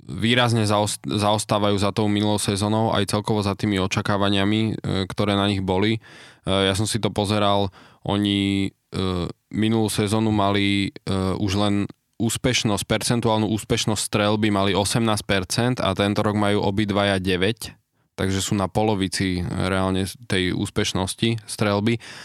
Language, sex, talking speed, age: Slovak, male, 125 wpm, 20-39